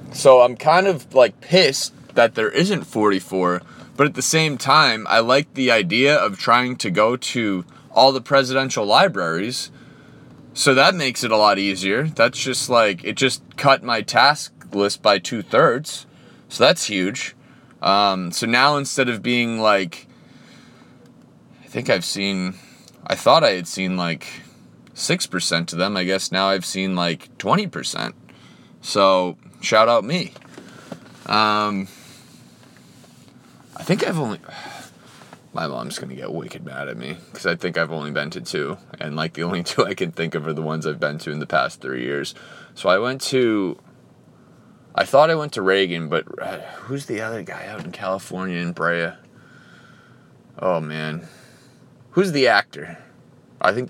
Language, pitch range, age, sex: English, 90-130 Hz, 20-39, male